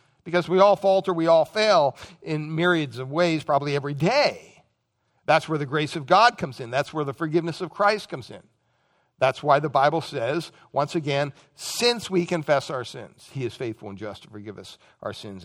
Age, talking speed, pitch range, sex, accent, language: 60-79, 200 wpm, 140-185 Hz, male, American, English